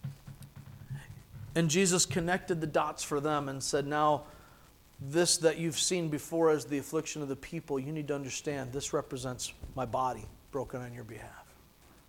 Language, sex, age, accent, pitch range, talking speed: English, male, 50-69, American, 125-175 Hz, 165 wpm